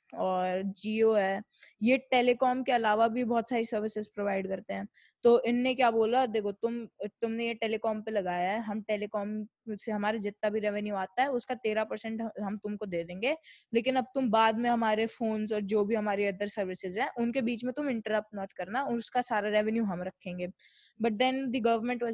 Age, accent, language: 20-39, Indian, English